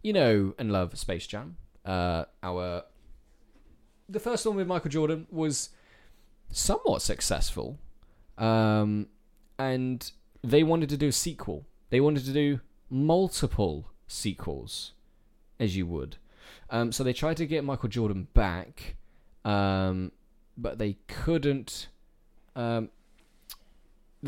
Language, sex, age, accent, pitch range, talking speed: English, male, 20-39, British, 95-120 Hz, 115 wpm